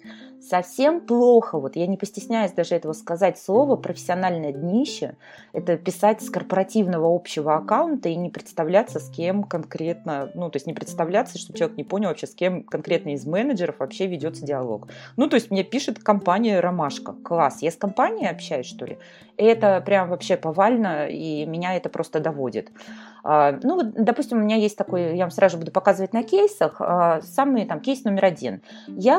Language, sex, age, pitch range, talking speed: Russian, female, 20-39, 170-230 Hz, 175 wpm